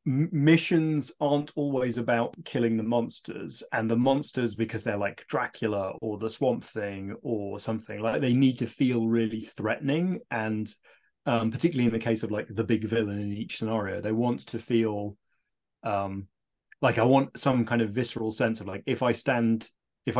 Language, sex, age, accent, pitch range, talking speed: English, male, 30-49, British, 110-125 Hz, 180 wpm